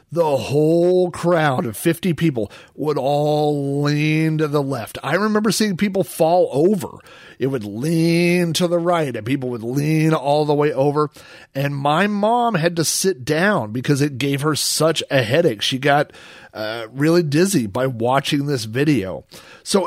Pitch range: 130-175 Hz